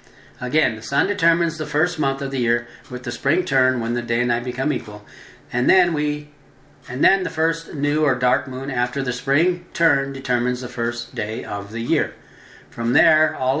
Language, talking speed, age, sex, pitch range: English, 205 wpm, 60-79, male, 120-145 Hz